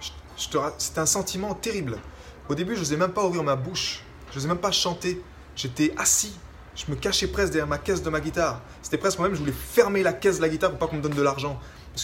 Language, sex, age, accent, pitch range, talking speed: French, male, 20-39, French, 115-175 Hz, 245 wpm